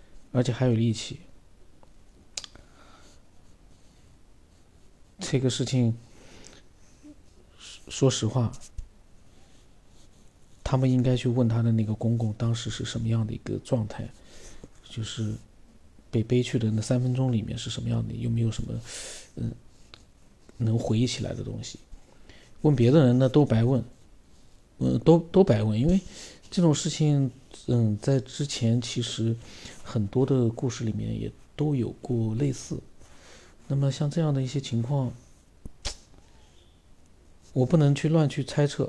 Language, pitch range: Chinese, 110-130 Hz